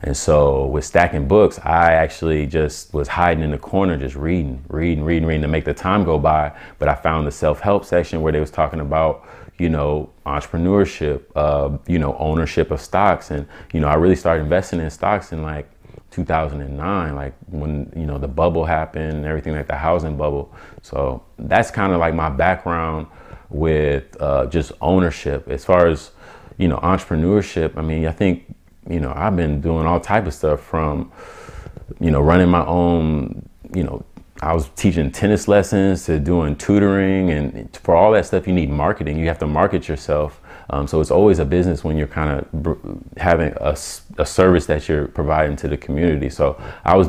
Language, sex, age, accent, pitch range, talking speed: English, male, 30-49, American, 75-85 Hz, 190 wpm